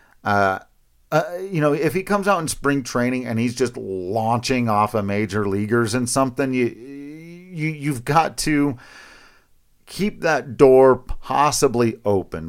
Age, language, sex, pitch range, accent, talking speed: 40-59, English, male, 105-145 Hz, American, 155 wpm